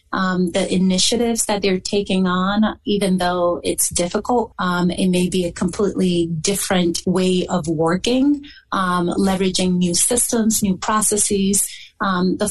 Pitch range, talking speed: 170-205 Hz, 140 wpm